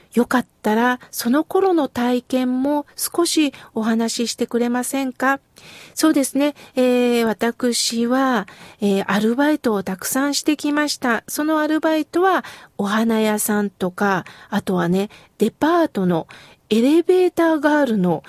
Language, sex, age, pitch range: Japanese, female, 40-59, 215-300 Hz